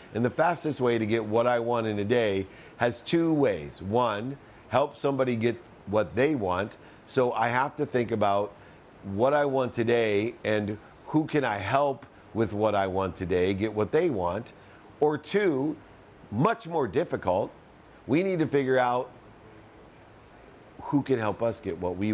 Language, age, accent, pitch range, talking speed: English, 50-69, American, 110-150 Hz, 170 wpm